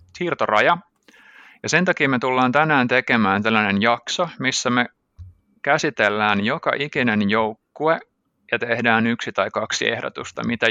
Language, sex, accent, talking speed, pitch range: Finnish, male, native, 130 wpm, 110-125 Hz